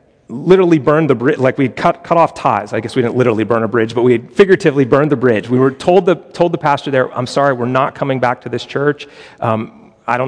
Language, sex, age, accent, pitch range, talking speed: English, male, 30-49, American, 120-150 Hz, 255 wpm